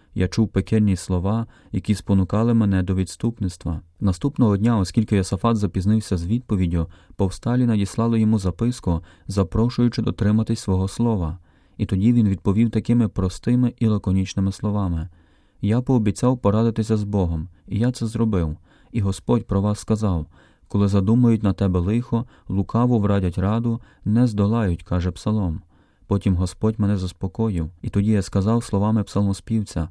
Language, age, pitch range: Ukrainian, 30-49, 95-110 Hz